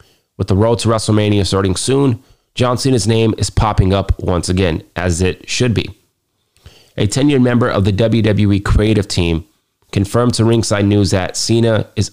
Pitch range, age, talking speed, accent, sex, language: 95-110 Hz, 30-49, 170 wpm, American, male, English